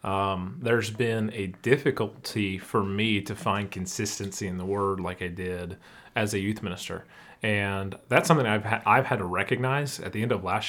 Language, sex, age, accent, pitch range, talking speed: English, male, 30-49, American, 105-135 Hz, 185 wpm